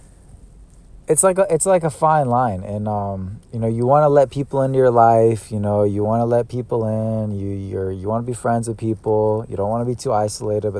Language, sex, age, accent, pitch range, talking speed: English, male, 20-39, American, 100-125 Hz, 250 wpm